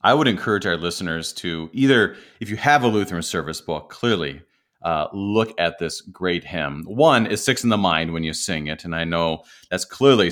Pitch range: 85-120 Hz